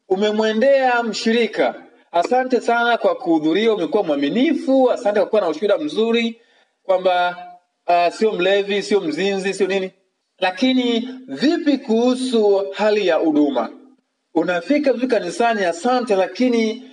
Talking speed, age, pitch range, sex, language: 115 wpm, 40-59, 200-270 Hz, male, Swahili